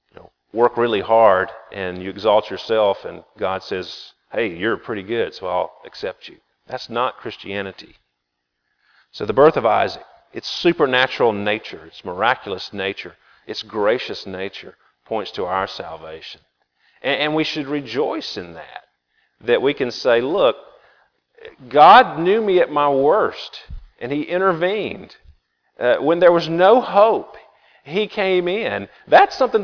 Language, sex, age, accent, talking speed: English, male, 40-59, American, 140 wpm